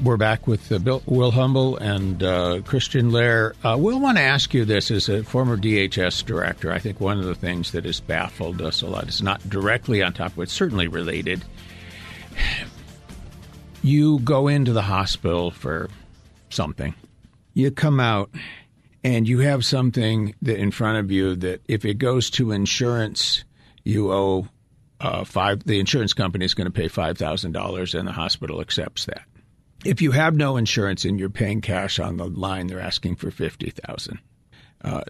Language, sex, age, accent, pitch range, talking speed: English, male, 60-79, American, 95-120 Hz, 180 wpm